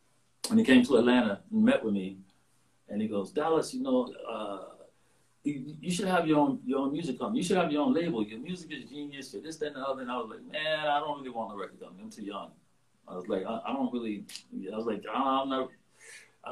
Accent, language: American, English